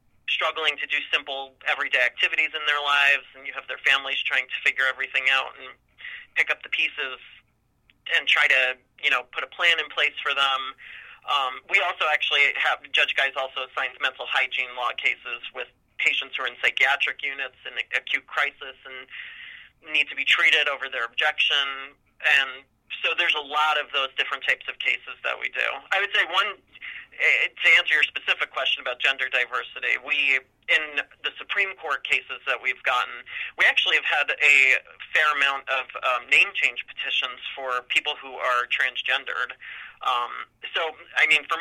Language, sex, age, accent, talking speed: English, male, 30-49, American, 180 wpm